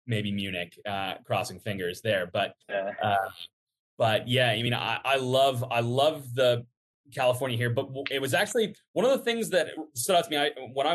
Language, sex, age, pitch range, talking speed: English, male, 20-39, 115-145 Hz, 195 wpm